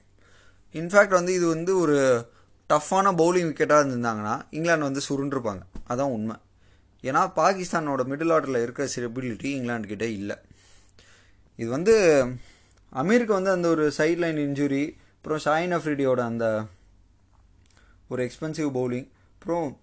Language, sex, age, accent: Tamil, male, 20-39, native